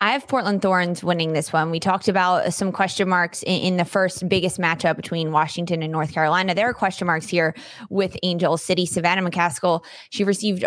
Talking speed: 200 wpm